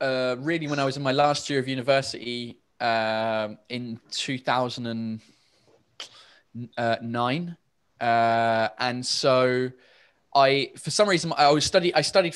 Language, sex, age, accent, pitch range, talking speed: English, male, 20-39, British, 125-150 Hz, 140 wpm